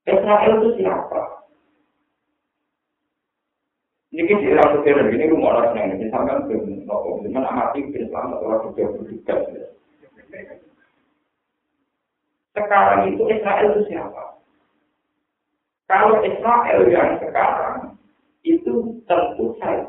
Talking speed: 70 wpm